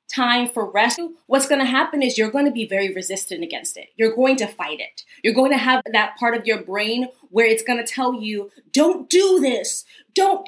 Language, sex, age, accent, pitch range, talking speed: English, female, 20-39, American, 225-270 Hz, 230 wpm